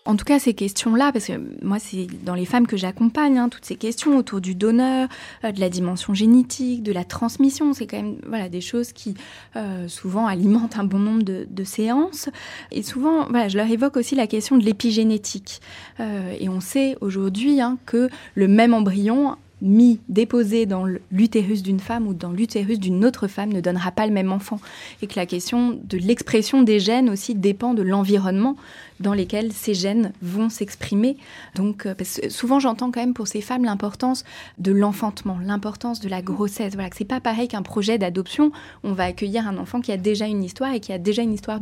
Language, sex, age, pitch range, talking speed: French, female, 20-39, 195-240 Hz, 205 wpm